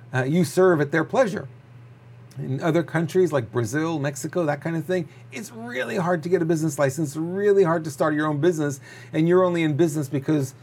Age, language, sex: 40-59, English, male